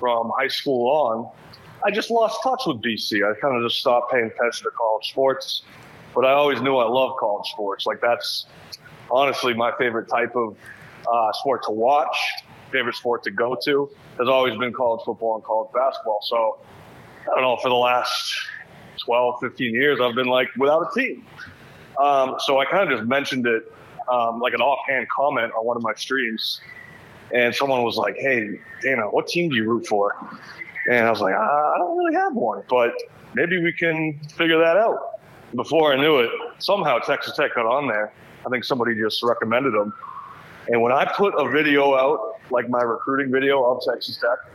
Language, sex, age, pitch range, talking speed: English, male, 30-49, 120-150 Hz, 195 wpm